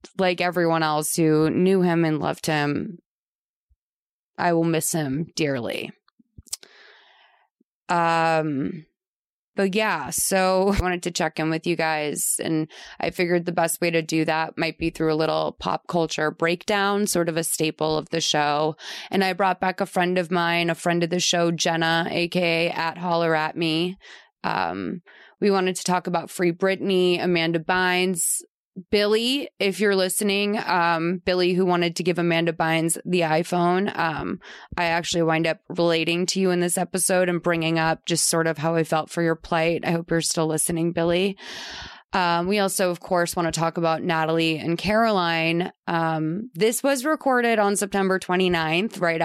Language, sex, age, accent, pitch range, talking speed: English, female, 20-39, American, 165-185 Hz, 175 wpm